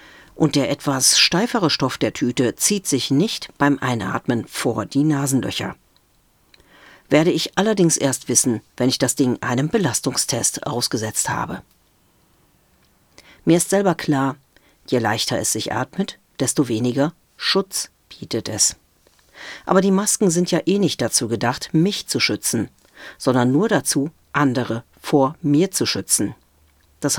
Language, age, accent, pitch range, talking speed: German, 40-59, German, 120-165 Hz, 140 wpm